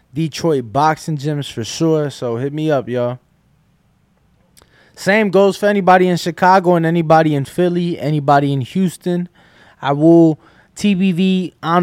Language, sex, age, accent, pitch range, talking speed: English, male, 20-39, American, 145-175 Hz, 135 wpm